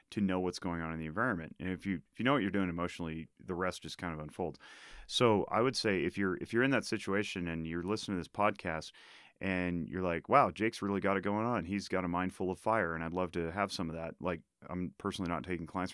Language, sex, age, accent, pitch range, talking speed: English, male, 30-49, American, 85-100 Hz, 270 wpm